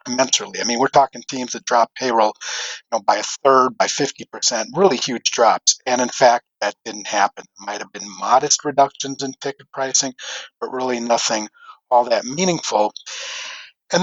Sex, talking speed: male, 160 wpm